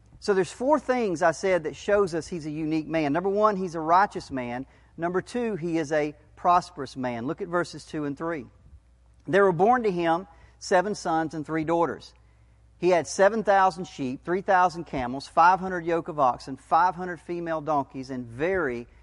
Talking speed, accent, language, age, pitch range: 180 wpm, American, English, 40-59, 135-180 Hz